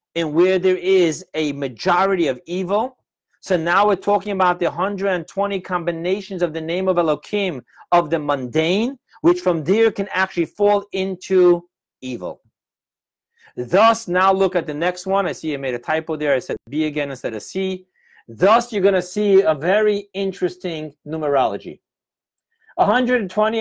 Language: English